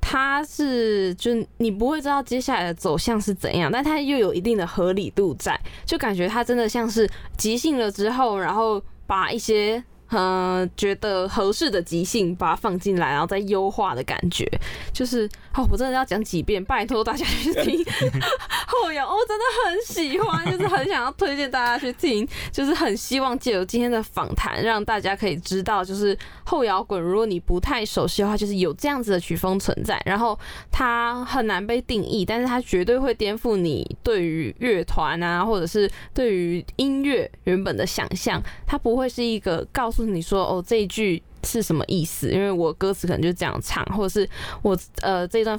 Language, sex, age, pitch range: Chinese, female, 20-39, 185-240 Hz